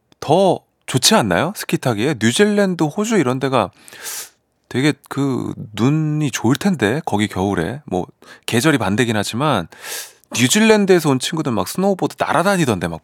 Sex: male